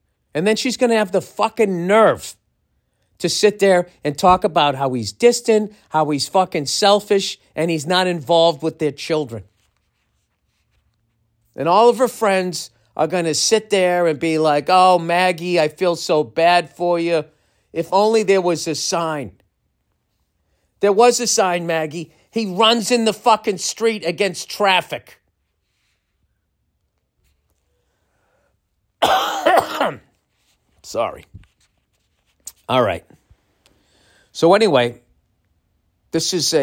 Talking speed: 125 wpm